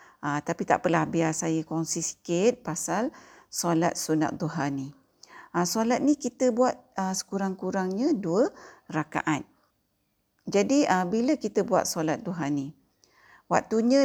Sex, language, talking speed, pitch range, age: female, Malay, 110 wpm, 165-225 Hz, 50-69